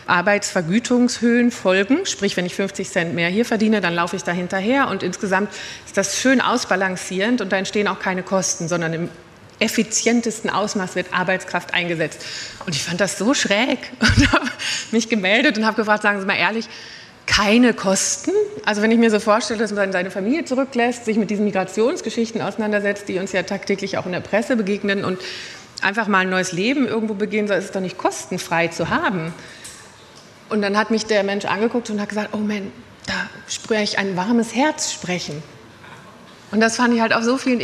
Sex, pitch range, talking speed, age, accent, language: female, 190-230 Hz, 190 wpm, 30-49, German, German